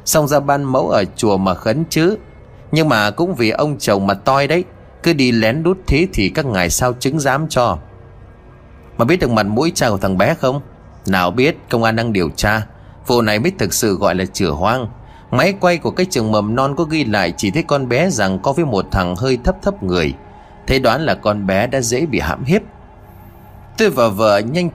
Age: 30-49